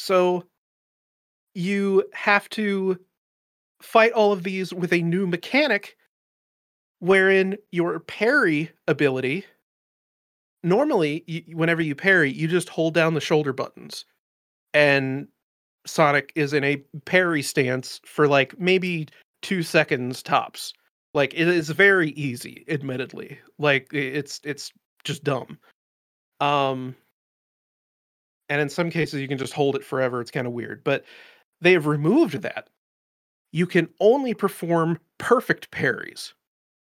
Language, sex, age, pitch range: English, male, 30-49, 145-190 Hz